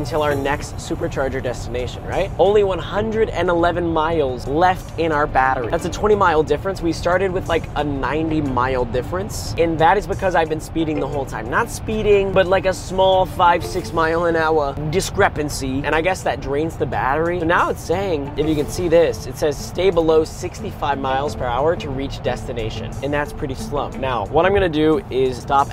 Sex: male